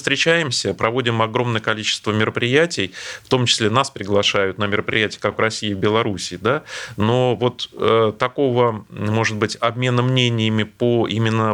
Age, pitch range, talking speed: 30-49, 105-125 Hz, 140 wpm